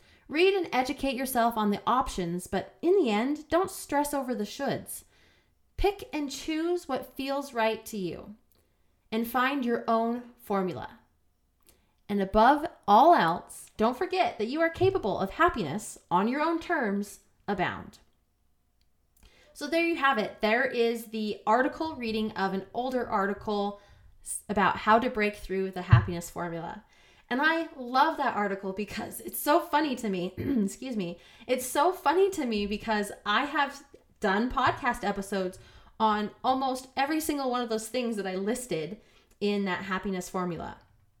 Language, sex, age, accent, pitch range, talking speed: English, female, 20-39, American, 200-275 Hz, 155 wpm